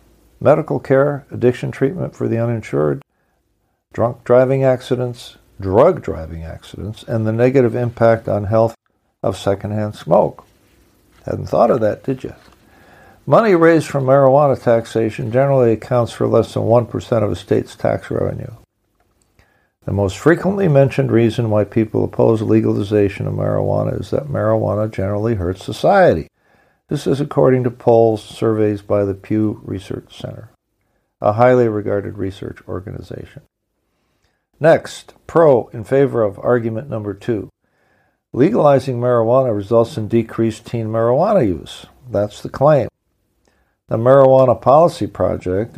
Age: 60-79